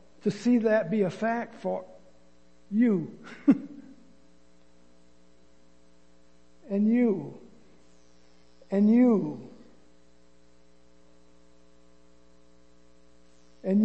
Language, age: English, 60-79